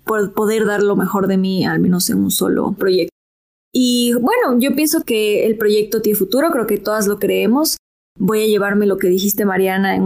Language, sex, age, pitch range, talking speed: Spanish, female, 20-39, 205-235 Hz, 205 wpm